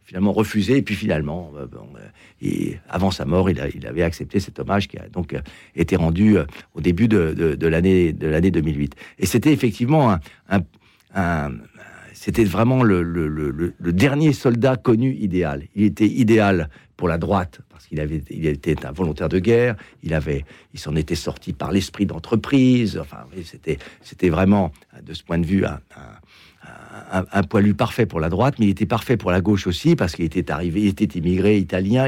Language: French